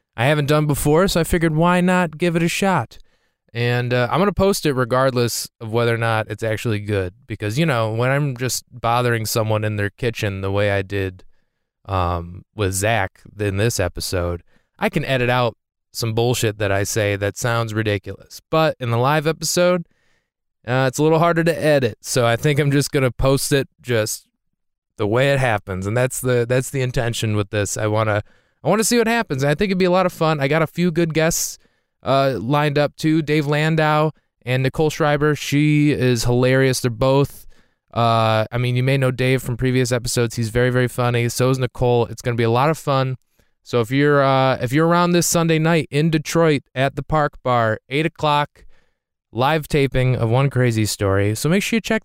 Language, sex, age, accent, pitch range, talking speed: English, male, 20-39, American, 115-150 Hz, 215 wpm